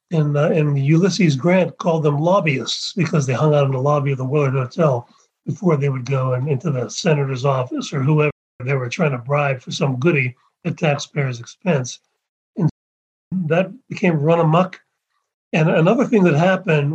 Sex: male